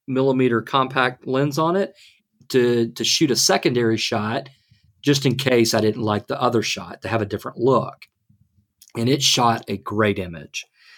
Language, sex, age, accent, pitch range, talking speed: English, male, 40-59, American, 110-135 Hz, 170 wpm